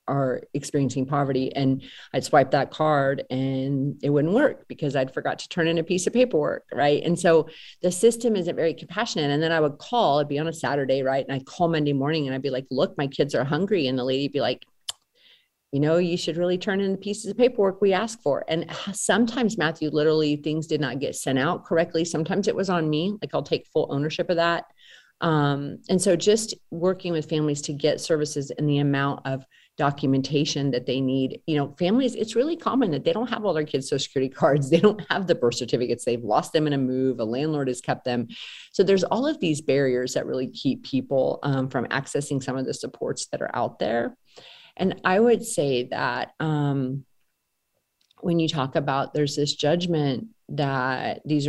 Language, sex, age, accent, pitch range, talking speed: English, female, 40-59, American, 135-175 Hz, 215 wpm